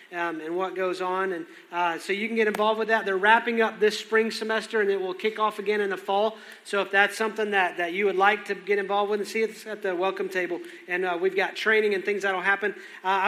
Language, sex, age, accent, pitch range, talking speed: English, male, 40-59, American, 190-225 Hz, 275 wpm